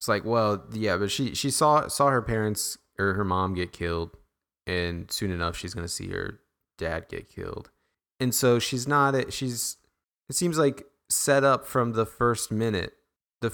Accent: American